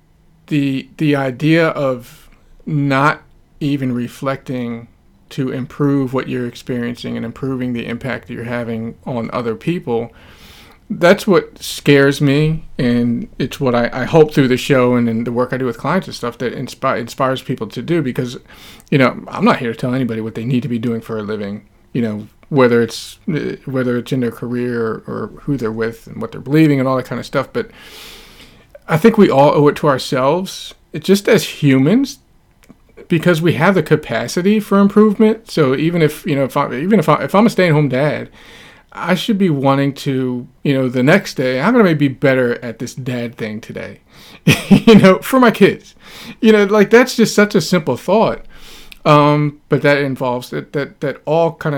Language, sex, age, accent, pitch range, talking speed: English, male, 40-59, American, 125-165 Hz, 200 wpm